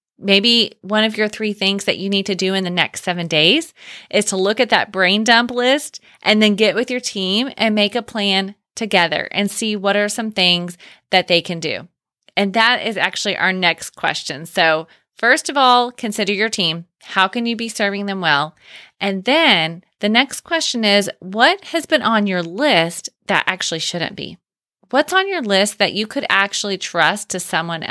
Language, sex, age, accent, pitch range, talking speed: English, female, 30-49, American, 180-230 Hz, 200 wpm